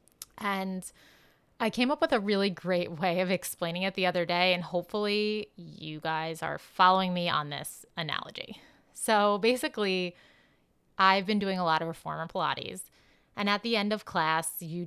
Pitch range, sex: 170-210 Hz, female